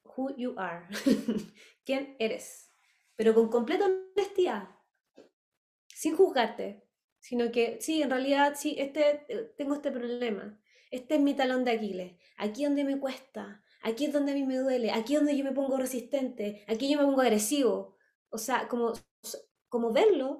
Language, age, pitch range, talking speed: English, 20-39, 225-295 Hz, 165 wpm